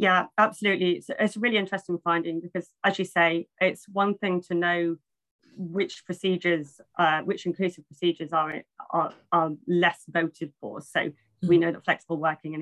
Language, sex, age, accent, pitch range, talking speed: English, female, 20-39, British, 165-180 Hz, 165 wpm